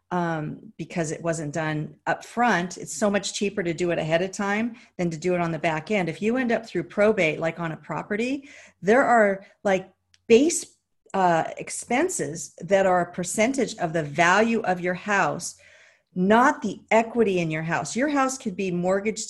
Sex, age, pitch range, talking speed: female, 40-59, 160-205 Hz, 195 wpm